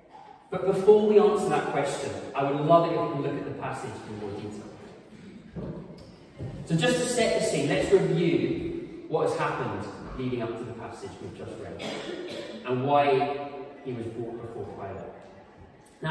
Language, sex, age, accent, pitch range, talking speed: English, male, 30-49, British, 130-190 Hz, 175 wpm